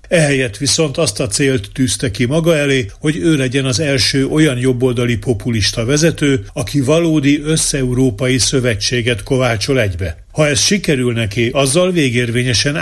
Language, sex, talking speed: Hungarian, male, 140 wpm